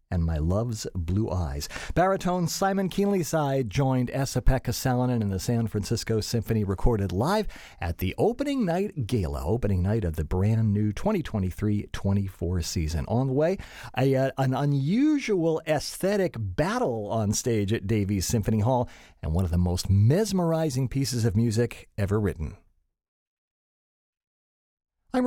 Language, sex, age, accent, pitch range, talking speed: English, male, 40-59, American, 105-160 Hz, 140 wpm